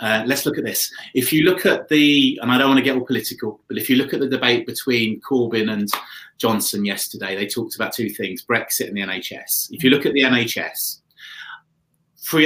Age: 30-49